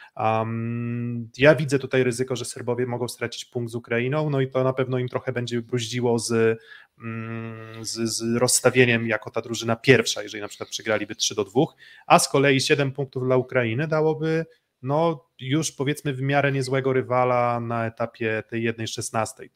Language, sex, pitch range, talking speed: Polish, male, 115-140 Hz, 170 wpm